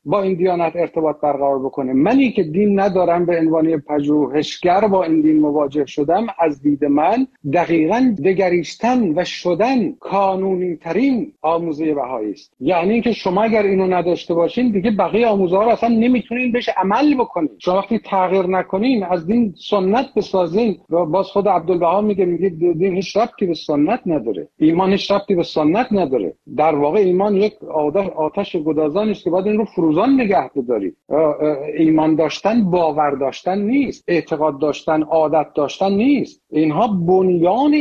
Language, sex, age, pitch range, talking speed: Persian, male, 50-69, 170-220 Hz, 150 wpm